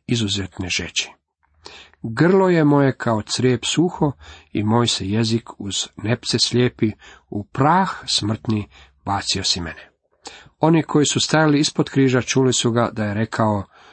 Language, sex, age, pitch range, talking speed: Croatian, male, 40-59, 100-130 Hz, 140 wpm